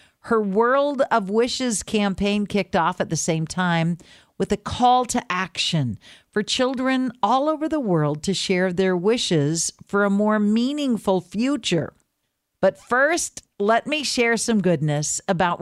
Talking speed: 150 wpm